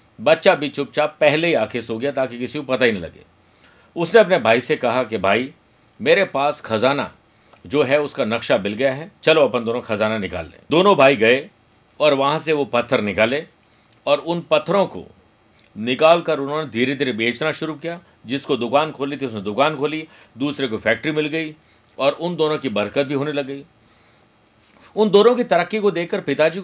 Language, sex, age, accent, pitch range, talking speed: Hindi, male, 50-69, native, 120-155 Hz, 195 wpm